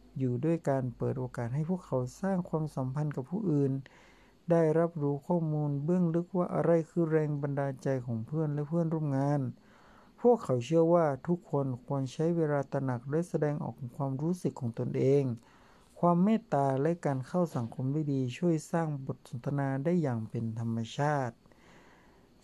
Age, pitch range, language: 60-79, 130-165 Hz, Thai